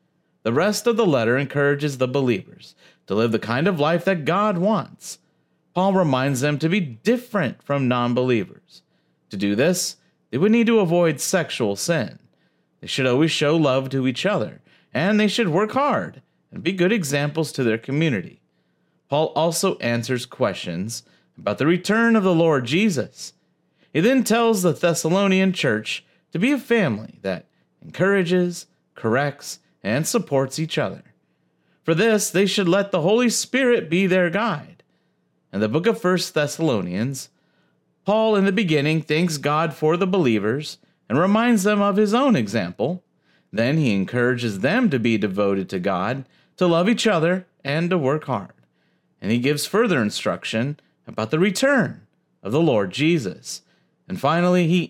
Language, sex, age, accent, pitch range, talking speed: English, male, 40-59, American, 135-200 Hz, 160 wpm